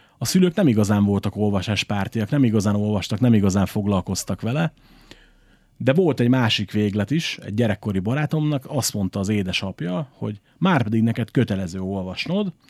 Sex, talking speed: male, 150 wpm